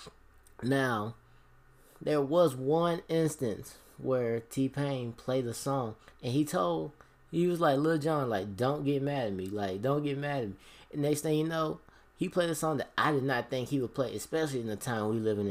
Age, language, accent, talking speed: 20-39, English, American, 205 wpm